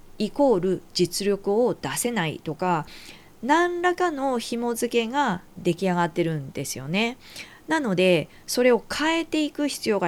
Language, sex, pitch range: Japanese, female, 170-255 Hz